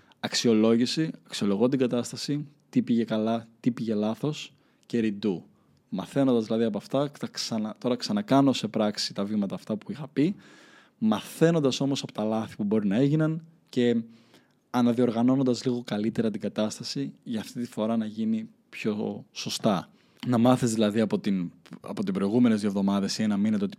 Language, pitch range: Greek, 110-140 Hz